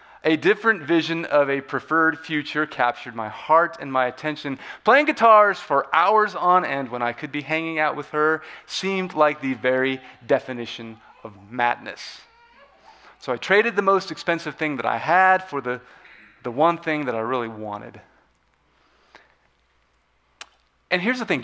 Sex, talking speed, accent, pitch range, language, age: male, 160 wpm, American, 140-185 Hz, English, 30-49